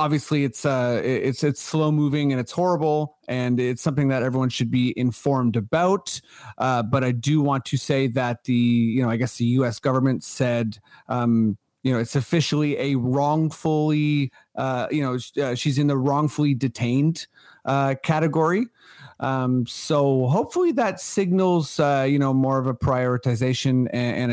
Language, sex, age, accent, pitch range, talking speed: English, male, 30-49, American, 125-155 Hz, 170 wpm